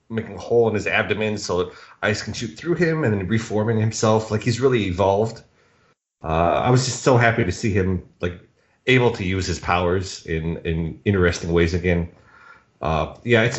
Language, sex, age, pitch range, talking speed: English, male, 30-49, 95-120 Hz, 195 wpm